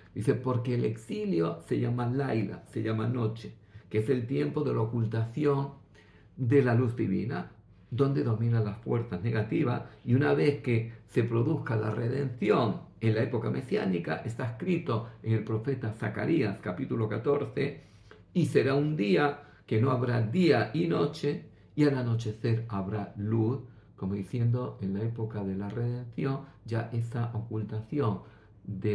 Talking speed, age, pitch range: 150 wpm, 50-69, 110-125 Hz